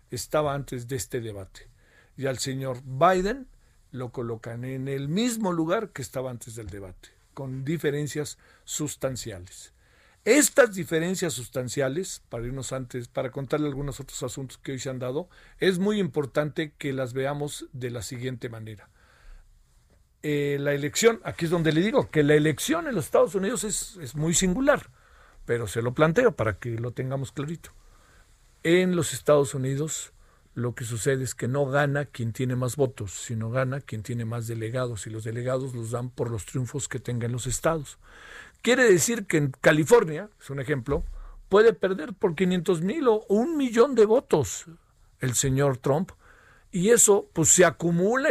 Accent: Mexican